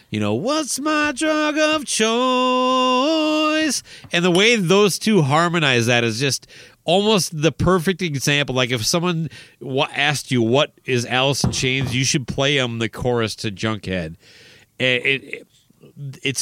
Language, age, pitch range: English, 30-49, 120-160 Hz